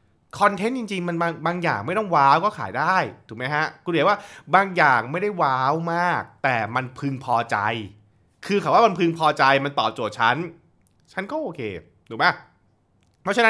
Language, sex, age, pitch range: Thai, male, 20-39, 120-170 Hz